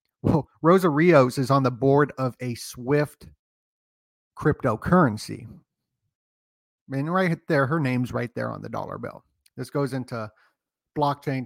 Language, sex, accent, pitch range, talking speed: English, male, American, 125-160 Hz, 135 wpm